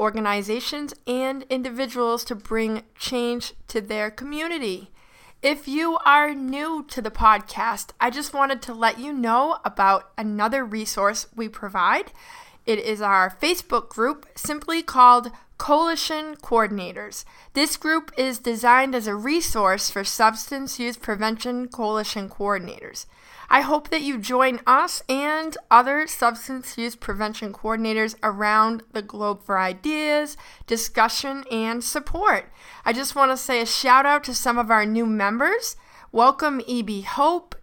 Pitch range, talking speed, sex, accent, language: 220-295 Hz, 140 wpm, female, American, English